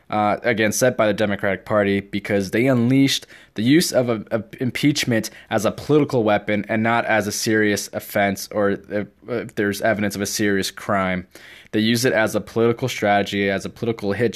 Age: 20-39